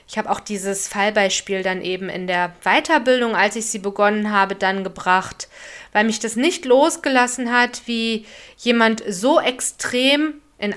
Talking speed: 155 wpm